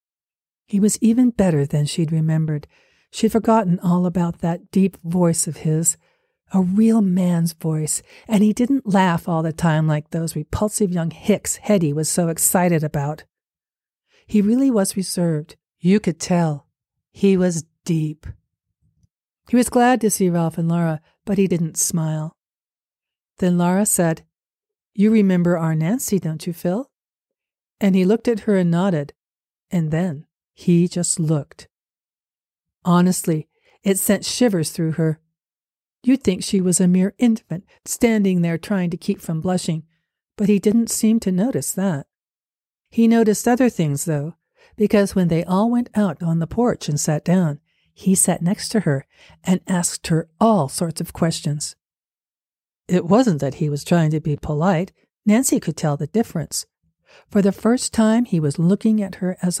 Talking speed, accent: 160 wpm, American